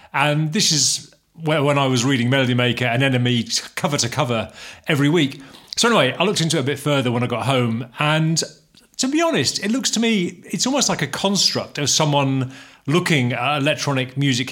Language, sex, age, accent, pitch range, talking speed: English, male, 40-59, British, 120-155 Hz, 205 wpm